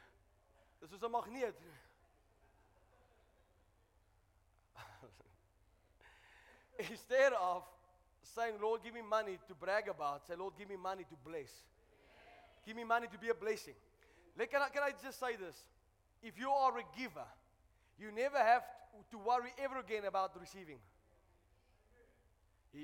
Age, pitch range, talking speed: 20-39, 190-265 Hz, 130 wpm